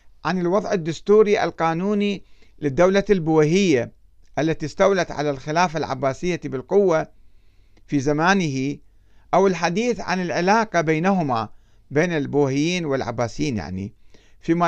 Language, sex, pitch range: Arabic, male, 130-185 Hz